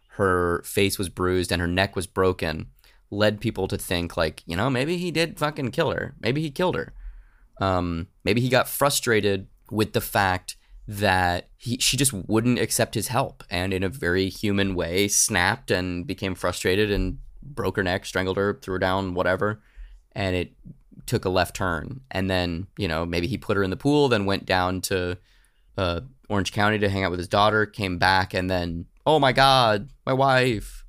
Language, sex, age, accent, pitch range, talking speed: English, male, 20-39, American, 90-110 Hz, 195 wpm